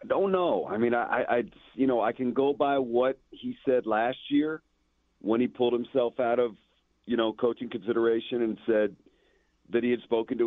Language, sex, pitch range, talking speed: English, male, 95-120 Hz, 200 wpm